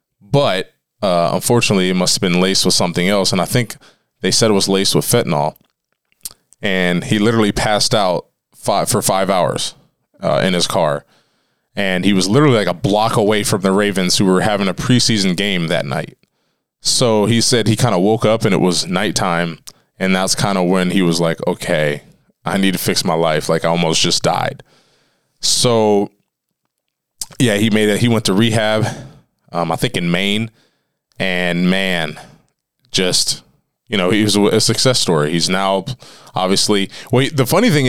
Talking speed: 180 wpm